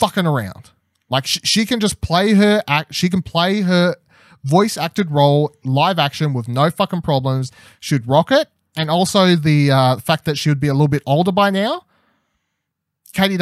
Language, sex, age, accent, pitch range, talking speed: English, male, 20-39, Australian, 135-195 Hz, 185 wpm